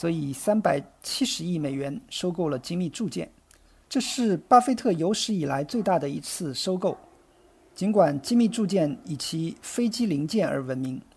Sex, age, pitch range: male, 50-69, 160-220 Hz